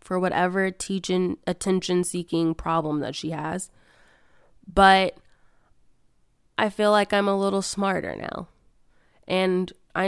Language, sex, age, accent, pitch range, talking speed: English, female, 20-39, American, 180-200 Hz, 105 wpm